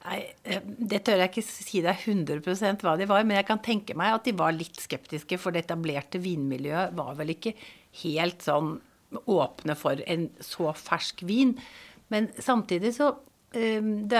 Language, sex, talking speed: English, female, 165 wpm